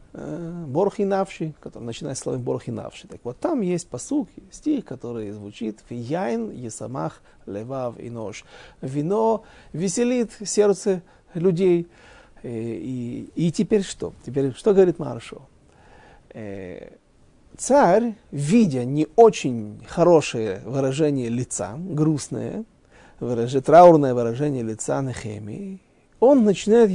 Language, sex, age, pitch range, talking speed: Russian, male, 40-59, 120-195 Hz, 105 wpm